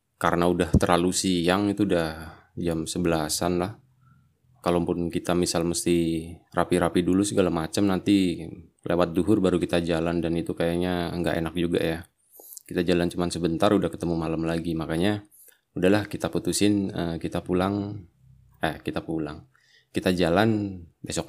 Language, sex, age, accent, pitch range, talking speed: Indonesian, male, 20-39, native, 85-100 Hz, 140 wpm